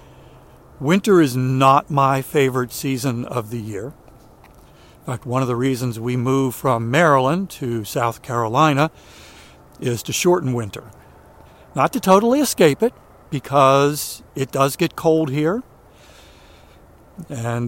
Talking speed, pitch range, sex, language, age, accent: 130 wpm, 120-155 Hz, male, English, 60-79, American